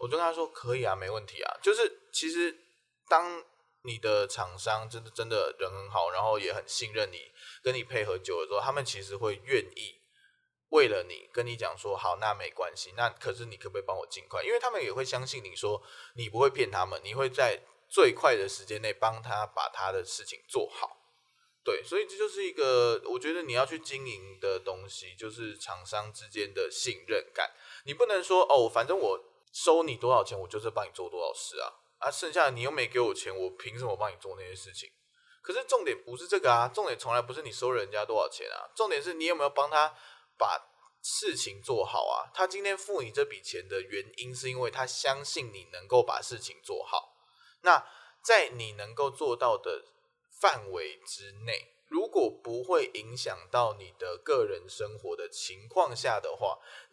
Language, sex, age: Chinese, male, 20-39